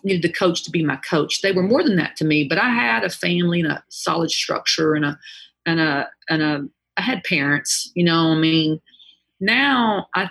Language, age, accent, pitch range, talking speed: English, 40-59, American, 155-175 Hz, 235 wpm